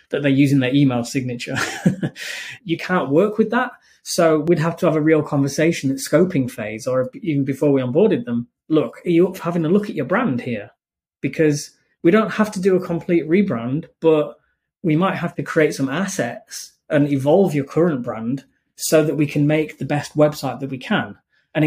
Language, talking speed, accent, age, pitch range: English, 205 wpm, British, 20-39, 135-170 Hz